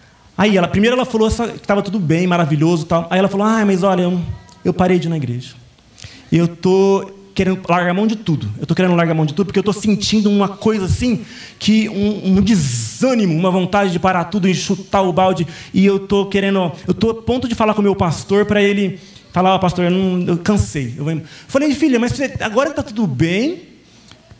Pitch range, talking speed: 165-215 Hz, 230 wpm